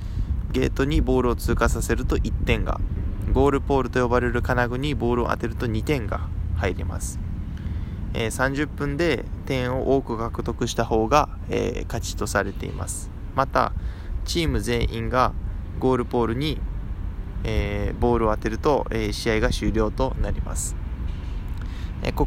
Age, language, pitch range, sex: 20-39, Japanese, 95-125 Hz, male